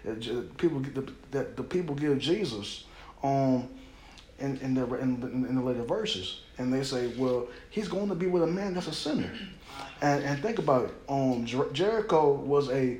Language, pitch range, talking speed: English, 125-155 Hz, 200 wpm